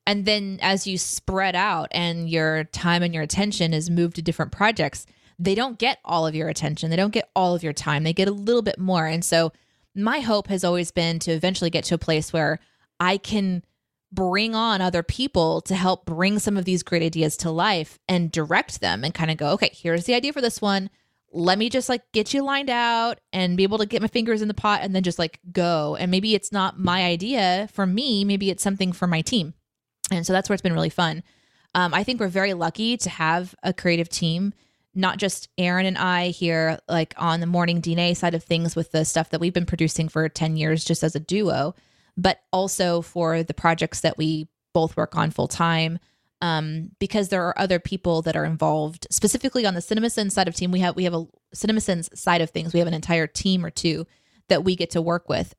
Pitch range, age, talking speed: 165-195 Hz, 20-39, 230 wpm